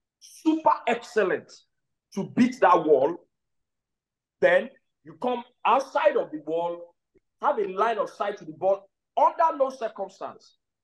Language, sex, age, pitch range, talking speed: English, male, 50-69, 145-245 Hz, 135 wpm